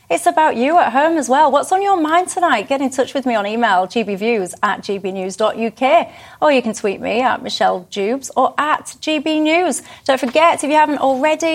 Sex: female